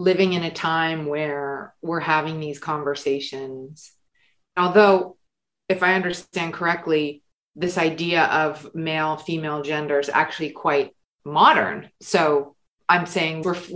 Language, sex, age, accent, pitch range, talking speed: English, female, 30-49, American, 155-190 Hz, 120 wpm